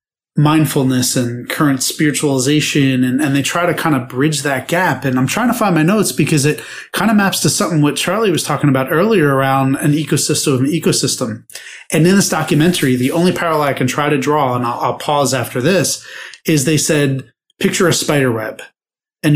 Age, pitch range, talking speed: 30-49, 140-175 Hz, 200 wpm